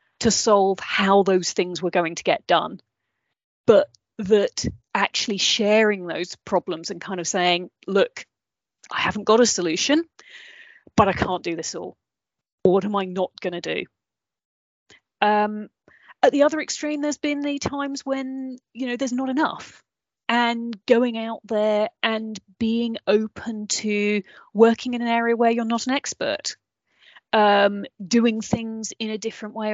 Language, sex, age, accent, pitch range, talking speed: English, female, 30-49, British, 200-260 Hz, 155 wpm